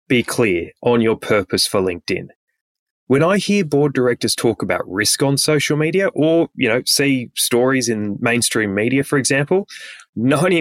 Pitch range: 115-155 Hz